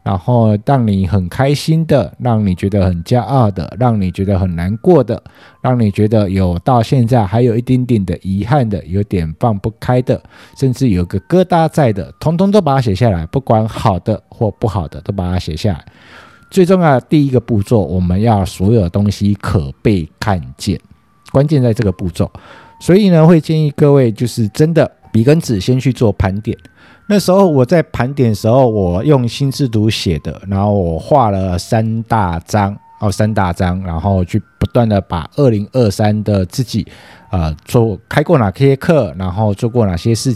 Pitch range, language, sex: 95-130 Hz, Chinese, male